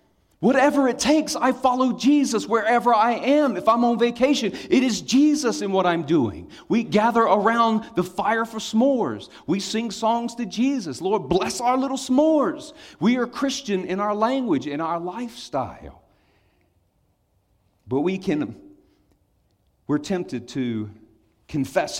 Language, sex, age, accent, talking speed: English, male, 40-59, American, 145 wpm